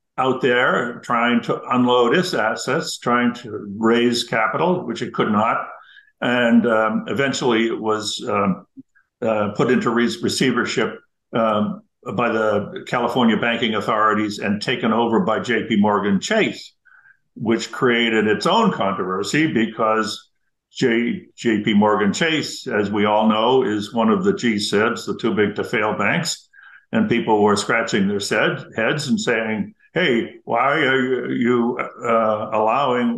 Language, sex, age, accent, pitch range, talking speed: English, male, 60-79, American, 115-155 Hz, 145 wpm